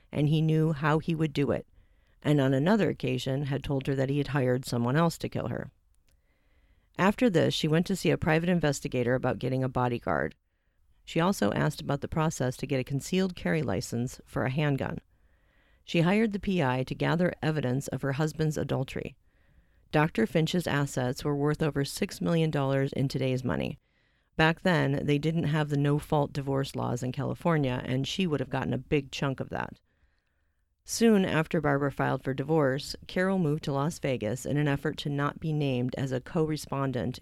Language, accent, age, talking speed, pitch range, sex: English, American, 40-59, 185 wpm, 125-155 Hz, female